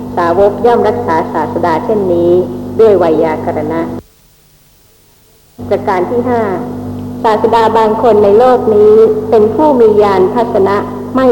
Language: Thai